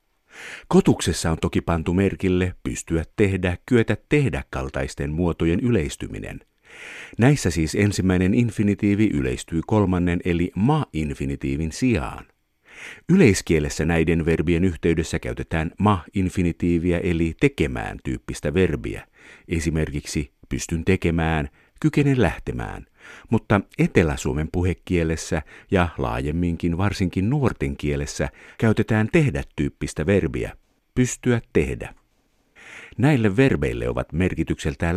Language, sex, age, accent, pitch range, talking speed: Finnish, male, 50-69, native, 80-100 Hz, 90 wpm